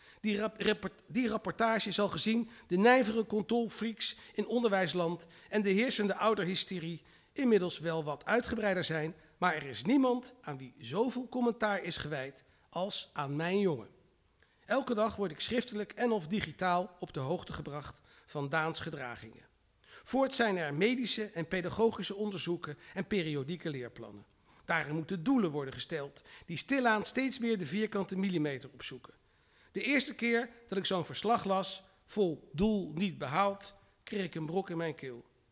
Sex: male